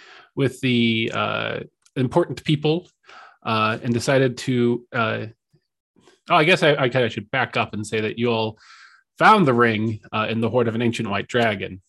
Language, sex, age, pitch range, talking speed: English, male, 30-49, 110-145 Hz, 175 wpm